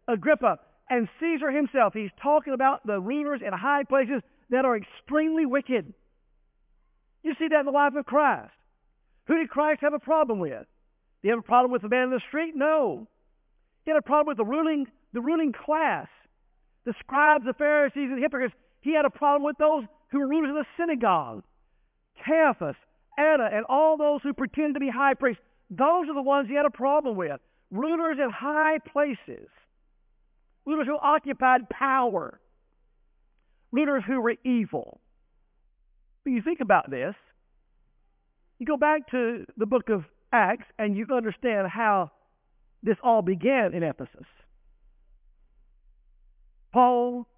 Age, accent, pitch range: 50-69, American, 205-290 Hz